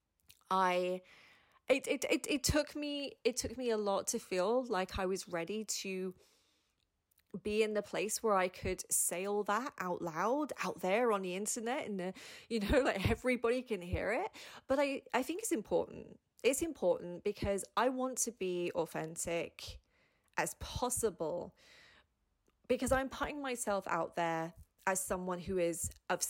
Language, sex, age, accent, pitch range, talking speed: English, female, 30-49, British, 185-255 Hz, 165 wpm